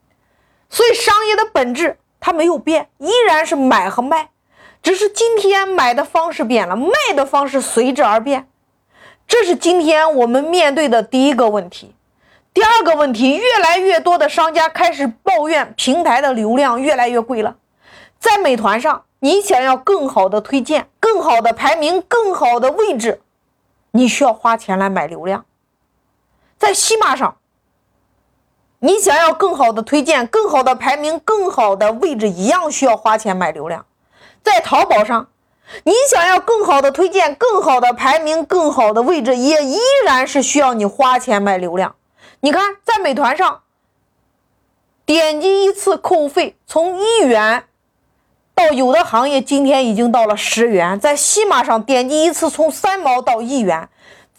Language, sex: Chinese, female